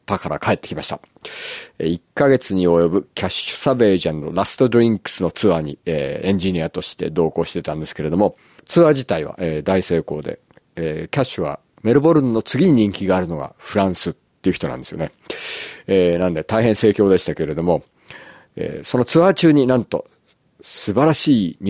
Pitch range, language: 85-120 Hz, Japanese